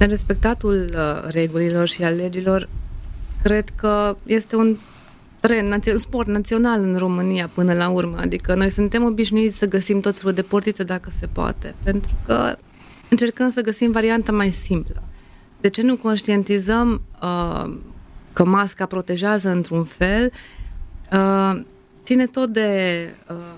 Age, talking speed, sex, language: 30-49, 140 wpm, female, Romanian